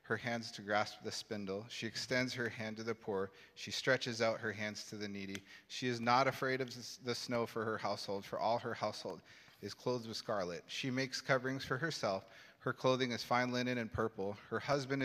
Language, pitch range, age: English, 105-125 Hz, 30-49